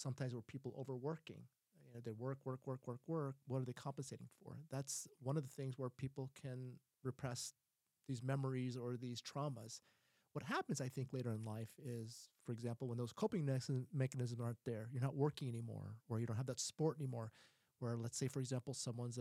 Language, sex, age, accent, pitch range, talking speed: English, male, 30-49, American, 115-135 Hz, 200 wpm